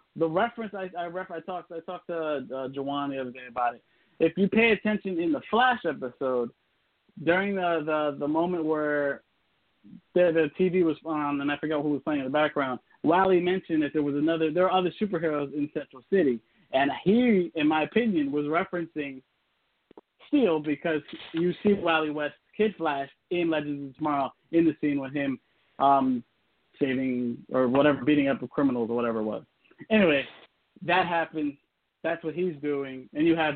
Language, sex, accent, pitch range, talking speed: English, male, American, 140-175 Hz, 190 wpm